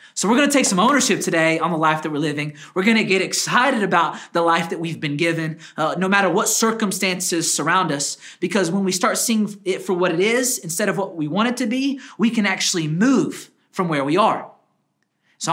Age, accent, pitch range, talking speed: 30-49, American, 150-210 Hz, 230 wpm